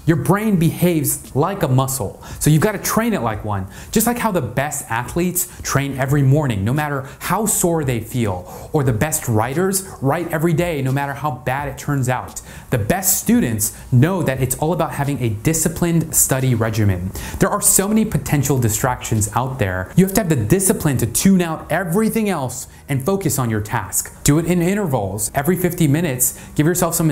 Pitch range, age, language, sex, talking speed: 120-175 Hz, 30-49, English, male, 200 wpm